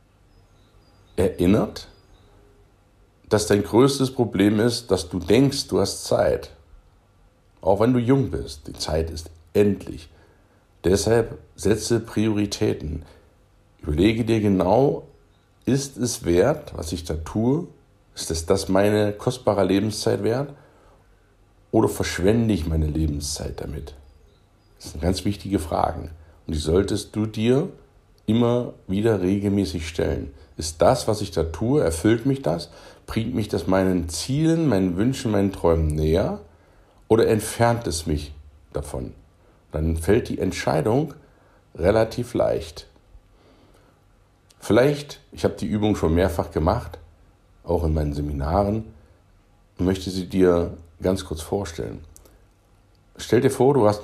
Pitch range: 85-105 Hz